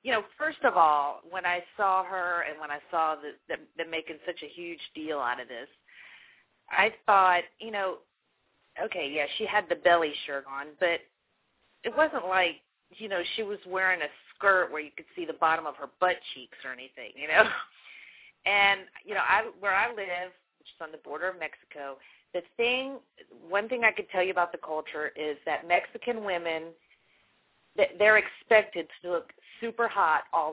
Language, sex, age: English, female, 40-59